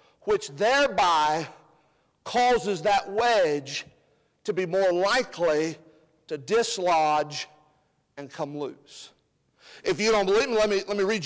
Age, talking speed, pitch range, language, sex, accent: 50-69, 125 wpm, 195-270 Hz, English, male, American